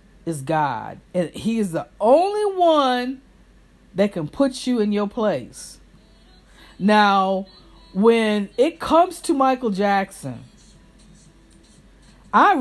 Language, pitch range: English, 185-245 Hz